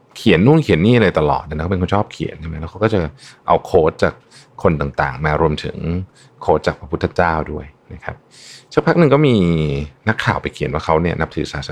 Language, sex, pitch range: Thai, male, 75-120 Hz